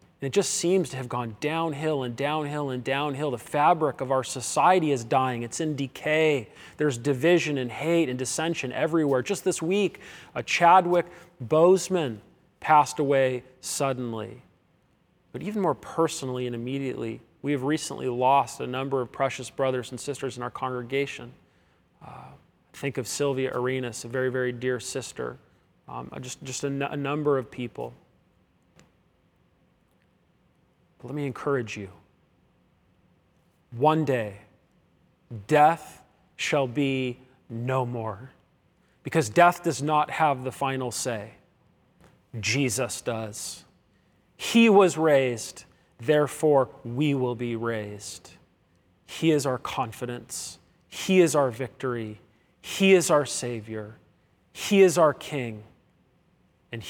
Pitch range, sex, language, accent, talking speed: 120-150 Hz, male, English, American, 130 wpm